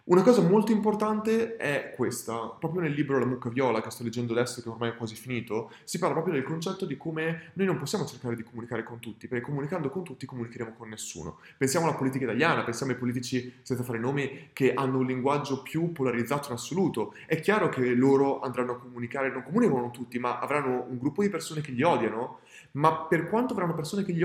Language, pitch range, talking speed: Italian, 125-170 Hz, 220 wpm